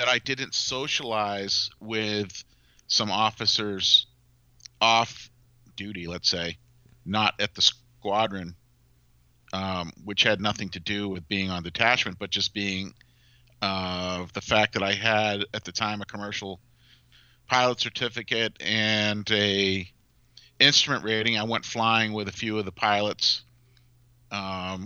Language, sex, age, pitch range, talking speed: English, male, 40-59, 100-115 Hz, 135 wpm